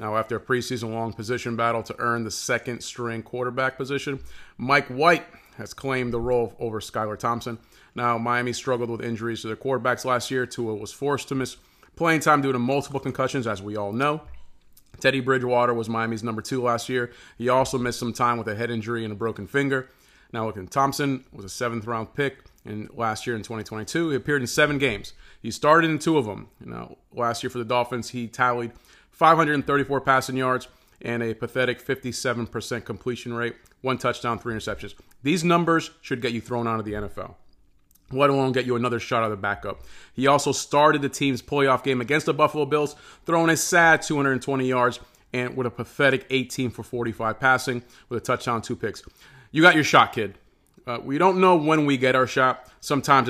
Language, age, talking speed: English, 30-49, 200 wpm